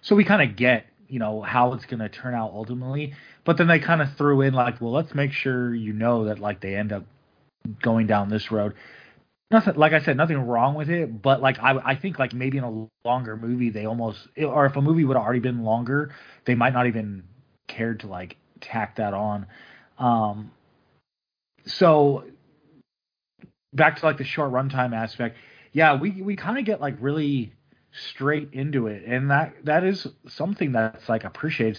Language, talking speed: English, 195 wpm